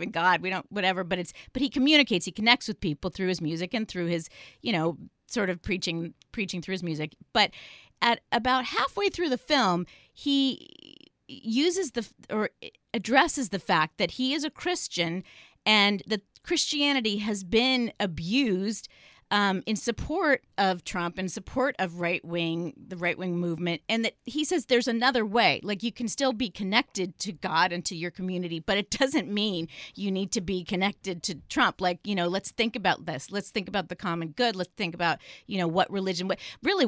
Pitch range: 175-235 Hz